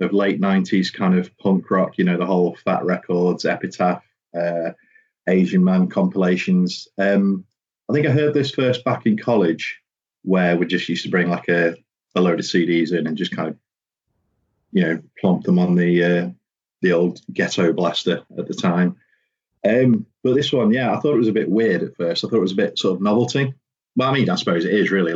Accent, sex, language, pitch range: British, male, English, 90-120 Hz